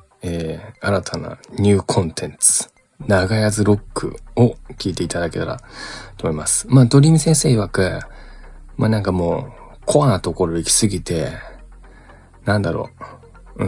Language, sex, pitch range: Japanese, male, 85-115 Hz